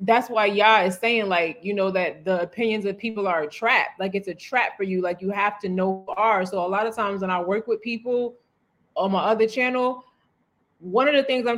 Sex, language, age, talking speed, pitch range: female, English, 20-39, 245 wpm, 195-255 Hz